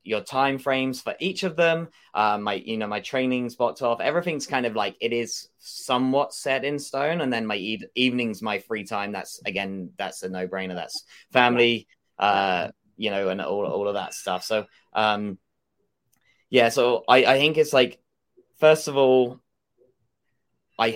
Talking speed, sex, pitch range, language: 185 wpm, male, 105-130 Hz, English